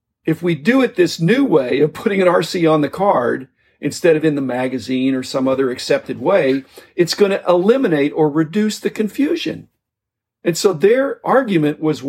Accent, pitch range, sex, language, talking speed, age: American, 140-205 Hz, male, English, 185 wpm, 50-69